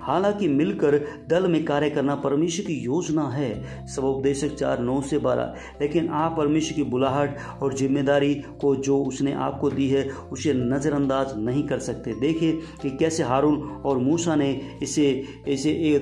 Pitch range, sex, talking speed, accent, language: 135-150 Hz, male, 155 wpm, Indian, English